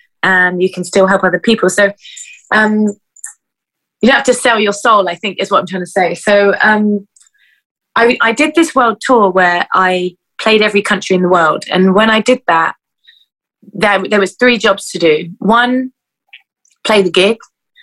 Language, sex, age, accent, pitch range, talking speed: English, female, 20-39, British, 180-230 Hz, 190 wpm